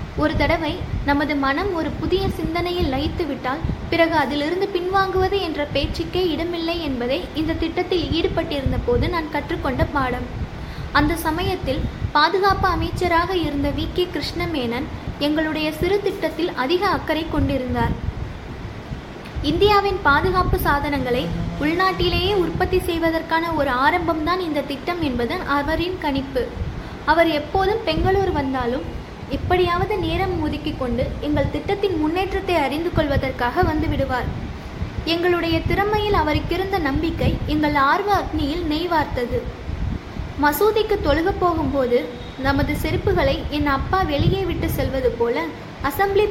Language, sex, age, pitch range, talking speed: Tamil, female, 20-39, 295-370 Hz, 110 wpm